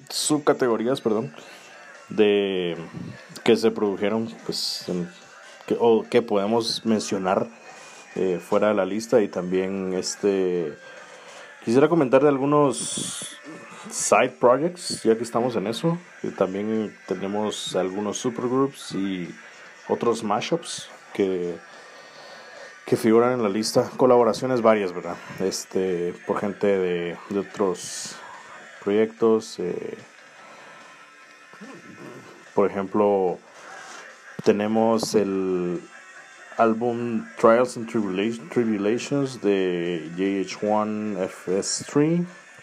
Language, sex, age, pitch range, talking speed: Spanish, male, 30-49, 95-120 Hz, 95 wpm